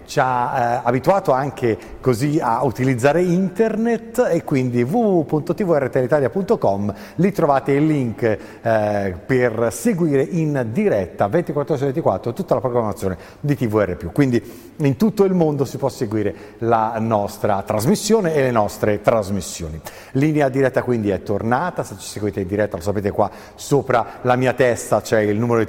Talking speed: 150 wpm